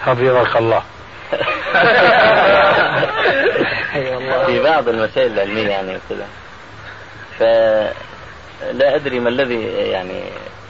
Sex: male